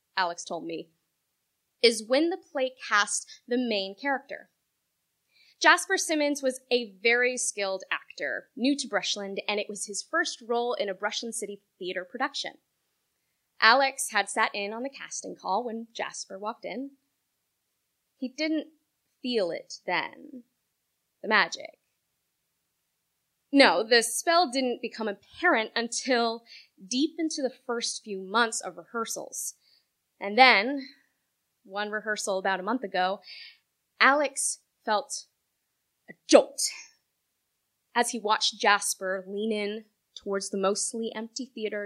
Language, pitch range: English, 205-280 Hz